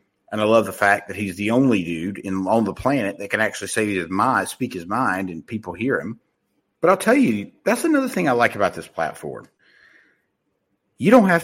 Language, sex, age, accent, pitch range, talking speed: English, male, 50-69, American, 100-140 Hz, 220 wpm